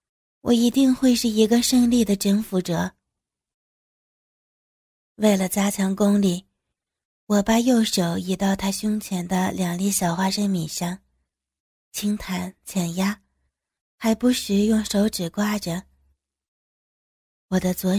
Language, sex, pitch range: Chinese, female, 185-215 Hz